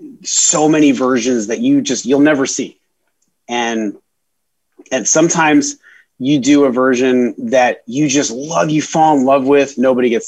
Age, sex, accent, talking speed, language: 30-49, male, American, 160 wpm, English